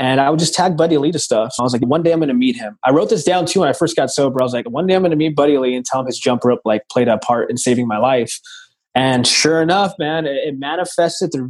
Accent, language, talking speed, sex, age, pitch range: American, English, 325 wpm, male, 20-39, 130-165 Hz